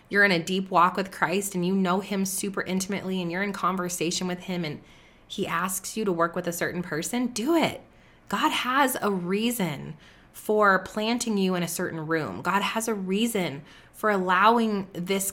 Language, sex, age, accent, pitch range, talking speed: English, female, 20-39, American, 170-200 Hz, 190 wpm